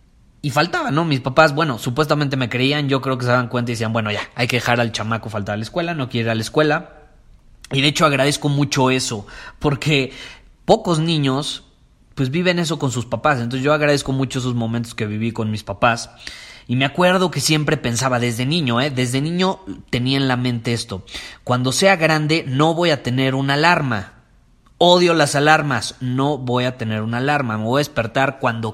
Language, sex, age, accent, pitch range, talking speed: Spanish, male, 20-39, Mexican, 120-145 Hz, 205 wpm